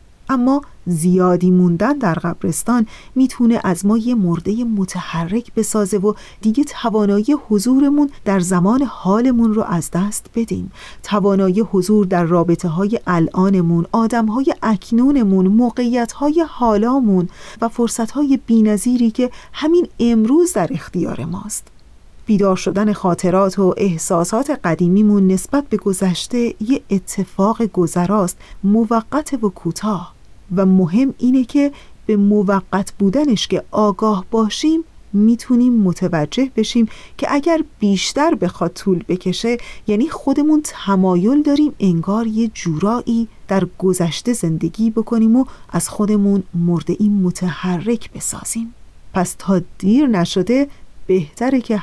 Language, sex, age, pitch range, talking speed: Persian, female, 40-59, 185-235 Hz, 115 wpm